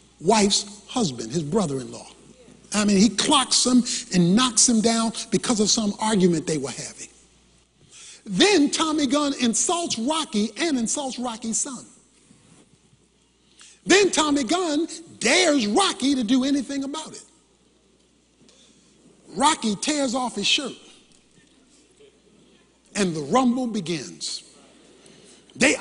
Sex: male